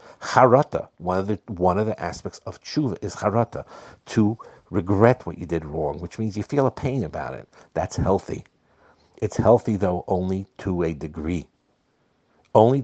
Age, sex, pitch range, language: 60-79, male, 85-110 Hz, English